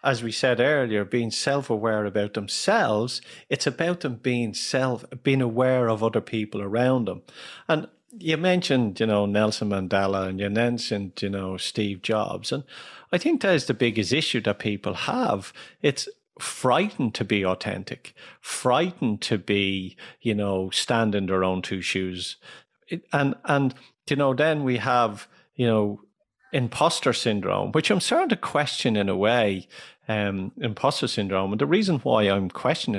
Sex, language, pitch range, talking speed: male, English, 105-140 Hz, 160 wpm